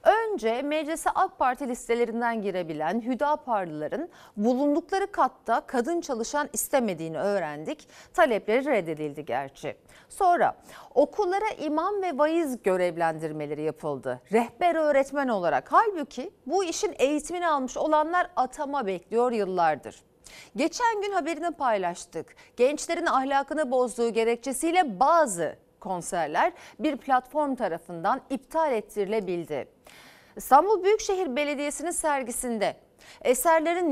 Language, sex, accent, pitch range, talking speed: Turkish, female, native, 225-320 Hz, 95 wpm